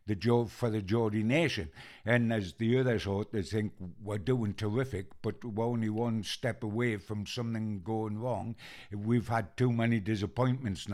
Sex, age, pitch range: male, 60-79, 110-125 Hz